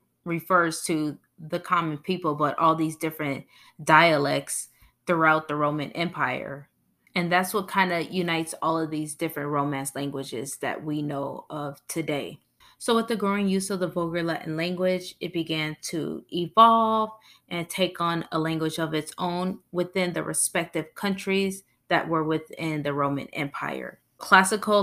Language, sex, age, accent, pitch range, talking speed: English, female, 20-39, American, 155-185 Hz, 155 wpm